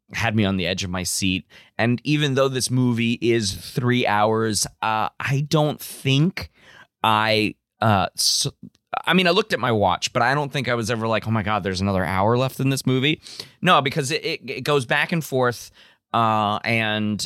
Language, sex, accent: English, male, American